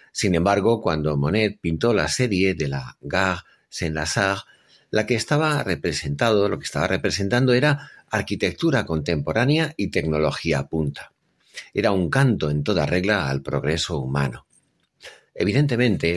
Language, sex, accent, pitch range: Spanish, male, Spanish, 75-115 Hz